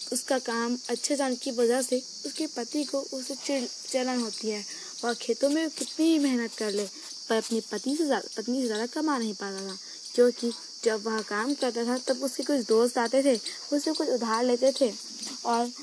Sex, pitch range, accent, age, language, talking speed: female, 230-275 Hz, Indian, 20-39, English, 195 wpm